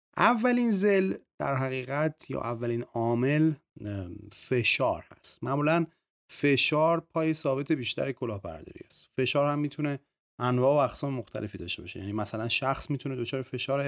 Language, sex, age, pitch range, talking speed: Persian, male, 30-49, 105-145 Hz, 135 wpm